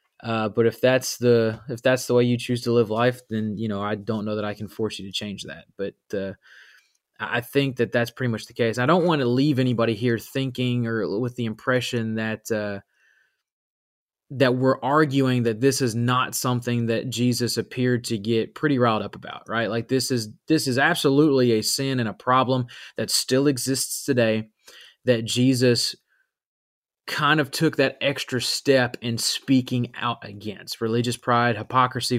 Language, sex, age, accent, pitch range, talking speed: English, male, 20-39, American, 115-130 Hz, 185 wpm